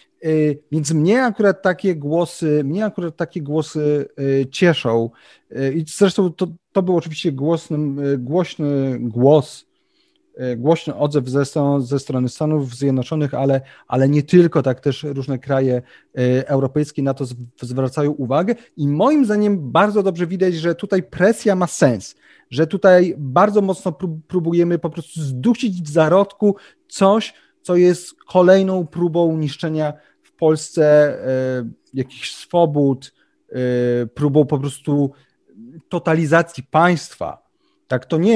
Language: Polish